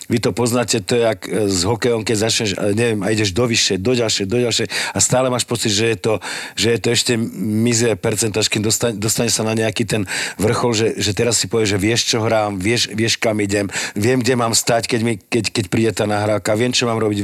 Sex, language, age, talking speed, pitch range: male, Slovak, 40-59, 220 wpm, 100-125 Hz